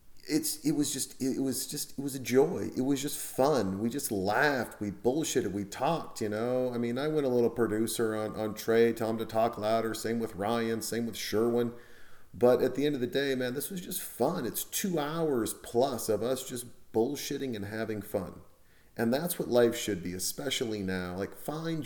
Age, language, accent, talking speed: 40-59, English, American, 210 wpm